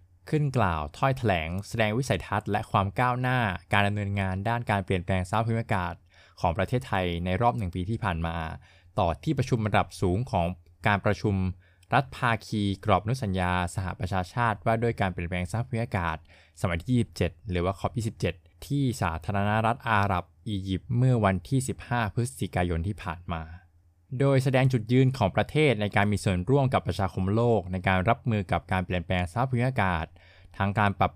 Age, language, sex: 20-39, Thai, male